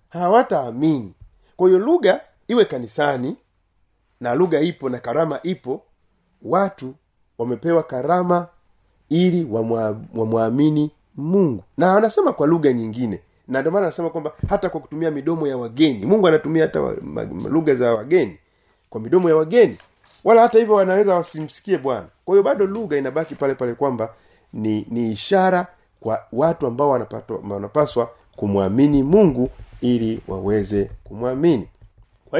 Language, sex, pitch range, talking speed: Swahili, male, 115-175 Hz, 140 wpm